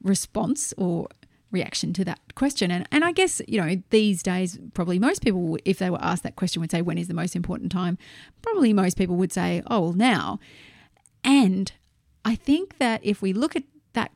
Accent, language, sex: Australian, English, female